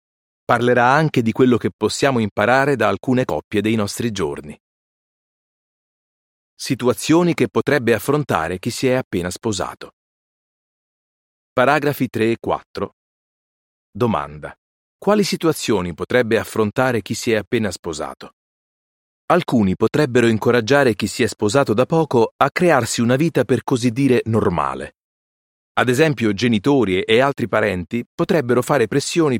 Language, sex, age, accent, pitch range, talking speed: Italian, male, 40-59, native, 110-135 Hz, 125 wpm